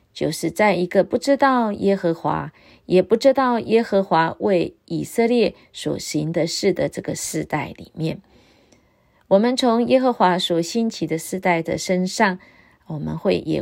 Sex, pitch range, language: female, 165-210 Hz, Chinese